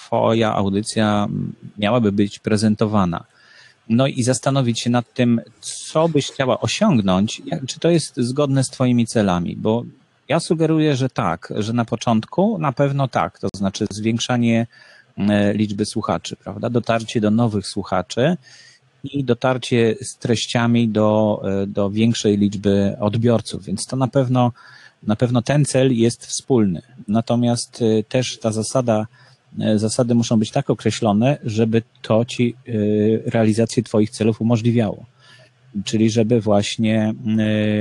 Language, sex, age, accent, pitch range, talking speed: Polish, male, 30-49, native, 105-125 Hz, 130 wpm